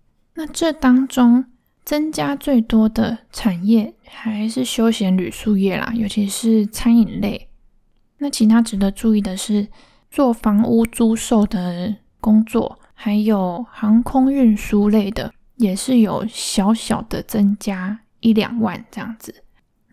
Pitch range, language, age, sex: 200-240 Hz, Chinese, 10-29, female